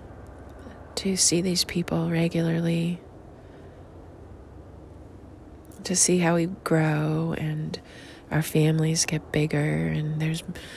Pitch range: 110-170 Hz